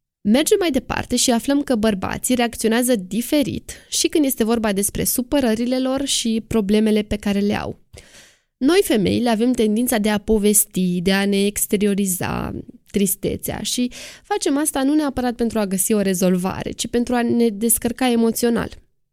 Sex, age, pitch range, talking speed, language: female, 20-39, 205-265 Hz, 155 wpm, Romanian